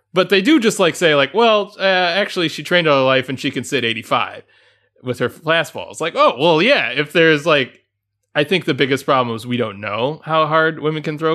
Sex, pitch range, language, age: male, 115-150 Hz, English, 20-39